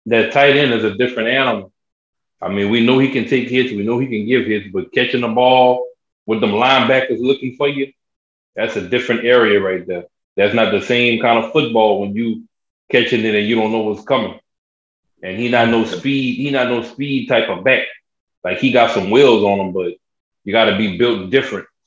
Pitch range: 110-130 Hz